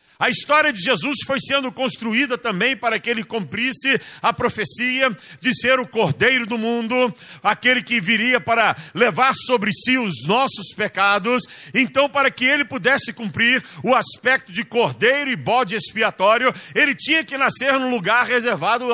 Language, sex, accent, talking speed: Portuguese, male, Brazilian, 160 wpm